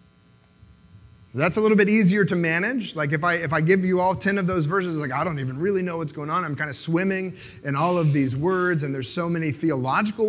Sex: male